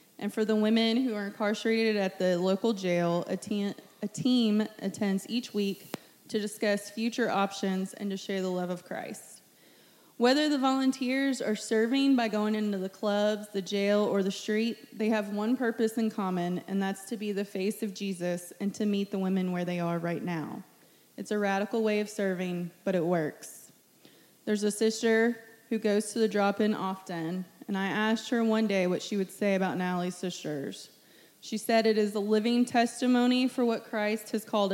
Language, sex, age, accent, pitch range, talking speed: English, female, 20-39, American, 190-225 Hz, 190 wpm